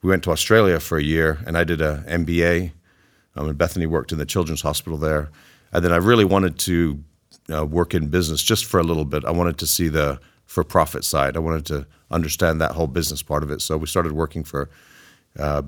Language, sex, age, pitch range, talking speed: English, male, 50-69, 75-85 Hz, 225 wpm